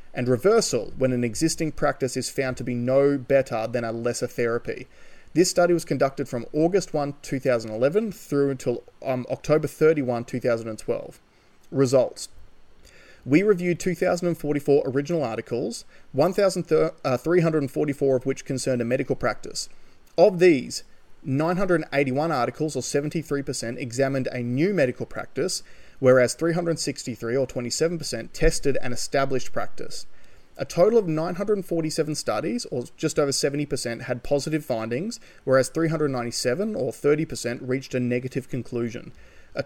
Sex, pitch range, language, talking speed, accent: male, 125-160 Hz, English, 125 wpm, Australian